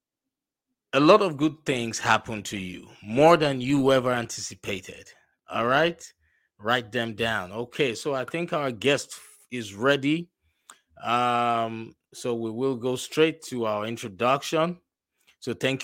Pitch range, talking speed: 110-140 Hz, 140 wpm